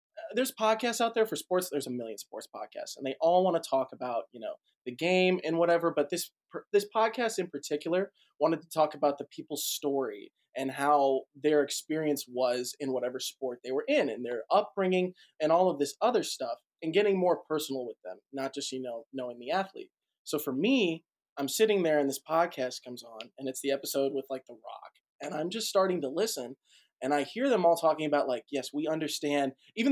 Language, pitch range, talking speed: English, 135-180 Hz, 215 wpm